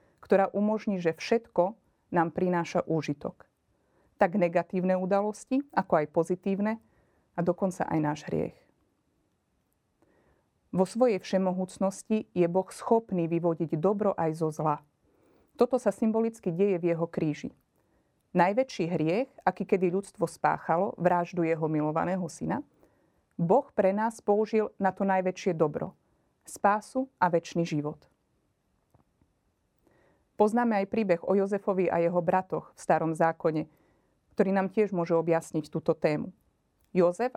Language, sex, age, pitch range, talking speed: Slovak, female, 30-49, 170-205 Hz, 125 wpm